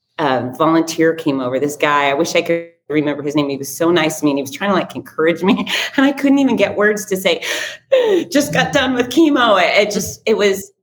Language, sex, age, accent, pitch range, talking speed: English, female, 30-49, American, 160-230 Hz, 245 wpm